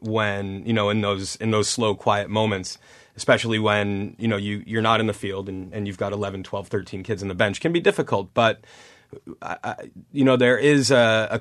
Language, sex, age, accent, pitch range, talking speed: English, male, 30-49, American, 100-120 Hz, 230 wpm